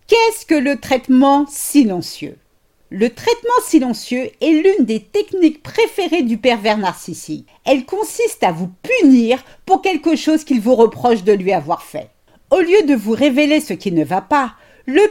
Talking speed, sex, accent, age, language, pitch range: 165 wpm, female, French, 50-69, French, 200-315 Hz